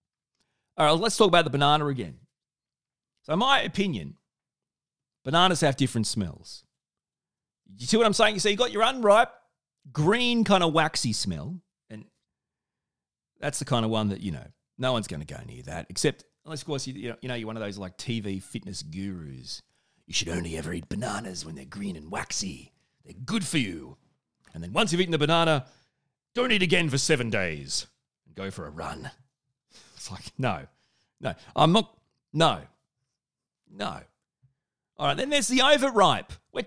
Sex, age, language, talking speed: male, 40-59, English, 180 wpm